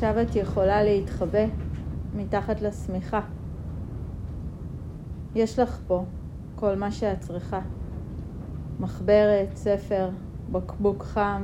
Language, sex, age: Hebrew, female, 30-49